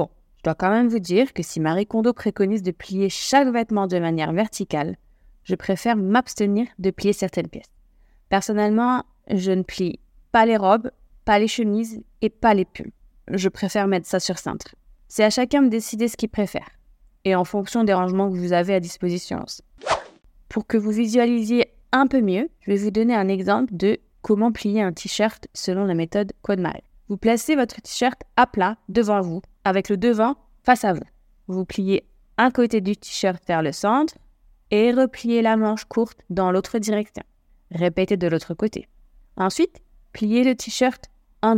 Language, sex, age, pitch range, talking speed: French, female, 20-39, 185-230 Hz, 180 wpm